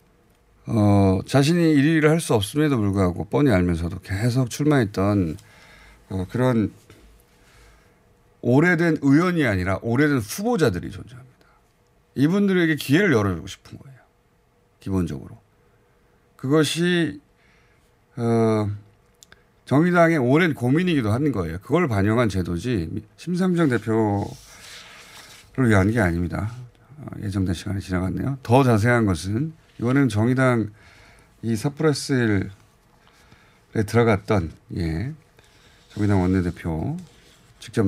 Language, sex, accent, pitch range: Korean, male, native, 100-145 Hz